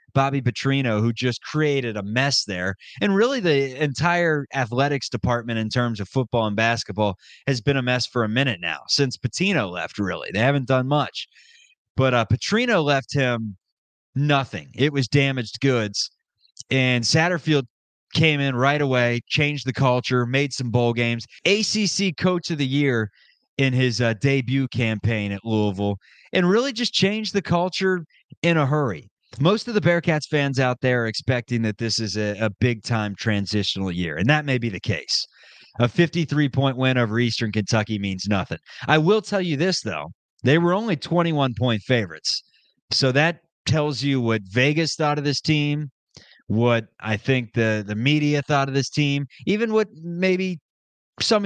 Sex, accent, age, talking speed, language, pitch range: male, American, 20-39, 170 wpm, English, 115-155 Hz